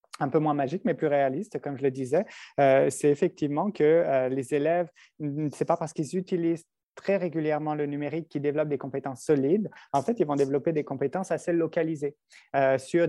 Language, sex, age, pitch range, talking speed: French, male, 30-49, 140-165 Hz, 200 wpm